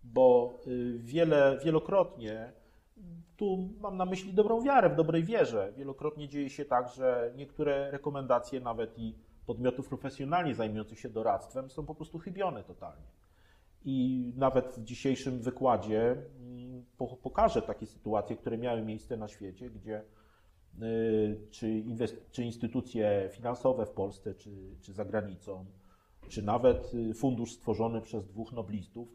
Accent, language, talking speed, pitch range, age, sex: native, Polish, 130 wpm, 105-130 Hz, 30-49, male